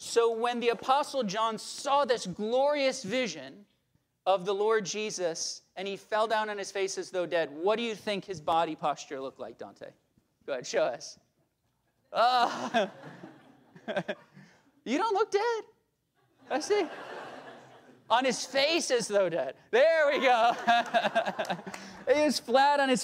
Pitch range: 175-255 Hz